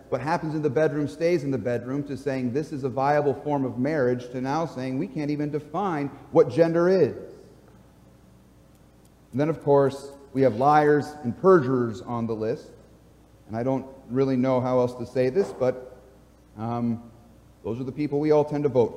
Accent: American